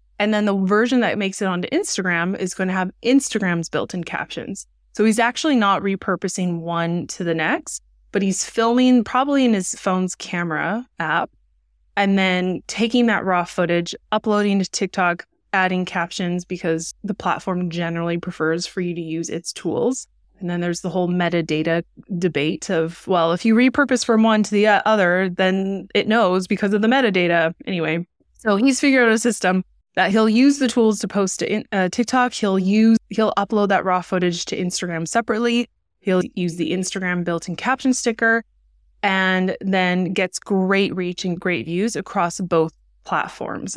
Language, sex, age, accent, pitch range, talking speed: English, female, 20-39, American, 175-215 Hz, 170 wpm